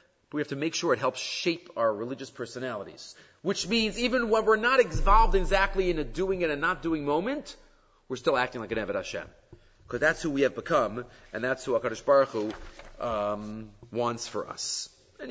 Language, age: English, 40-59